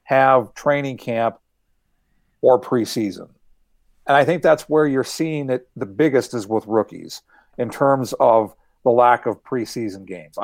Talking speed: 150 wpm